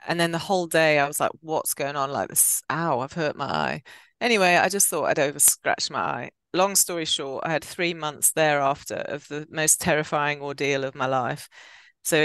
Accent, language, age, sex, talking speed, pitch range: British, English, 30-49, female, 210 wpm, 140-165 Hz